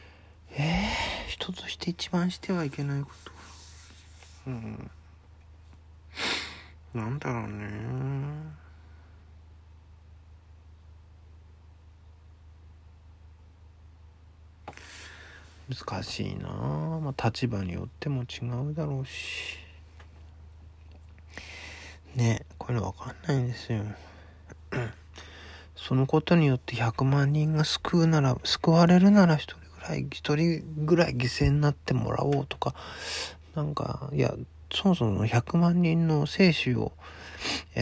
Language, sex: Japanese, male